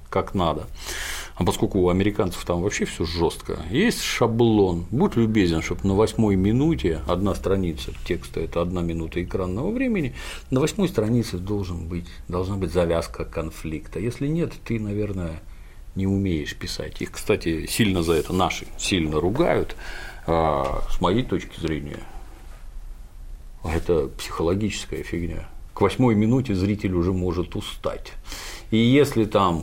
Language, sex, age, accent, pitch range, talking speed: Russian, male, 50-69, native, 85-110 Hz, 135 wpm